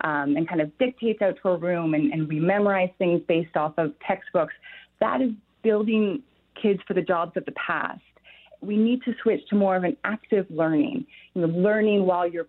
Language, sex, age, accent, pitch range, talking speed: English, female, 30-49, American, 170-220 Hz, 205 wpm